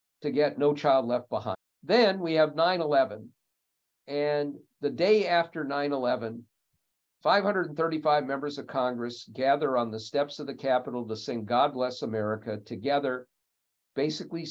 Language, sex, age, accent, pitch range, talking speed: English, male, 50-69, American, 125-165 Hz, 135 wpm